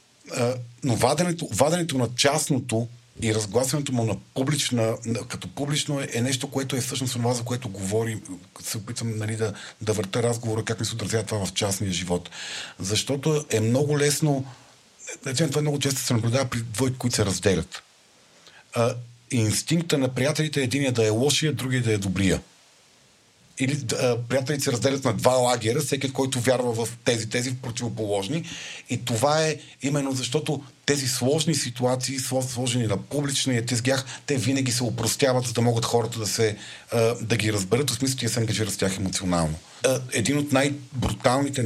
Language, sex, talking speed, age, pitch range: Bulgarian, male, 170 wpm, 50-69, 110-135 Hz